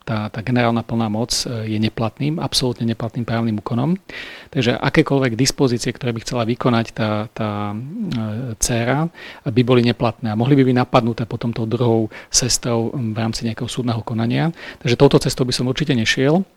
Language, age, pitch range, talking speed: Slovak, 40-59, 115-130 Hz, 165 wpm